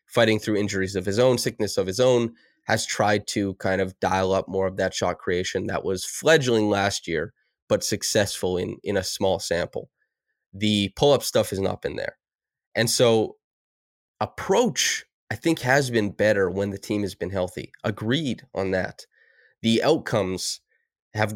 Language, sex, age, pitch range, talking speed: English, male, 20-39, 95-120 Hz, 170 wpm